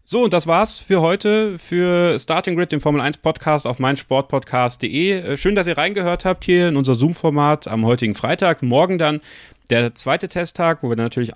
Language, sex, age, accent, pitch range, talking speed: German, male, 30-49, German, 120-165 Hz, 175 wpm